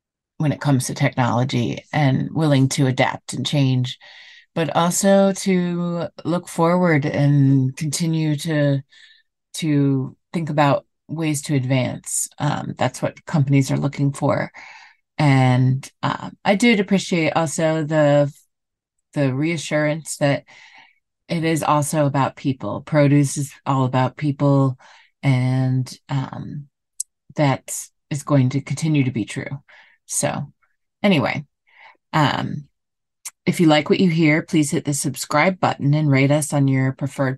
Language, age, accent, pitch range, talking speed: English, 30-49, American, 140-170 Hz, 135 wpm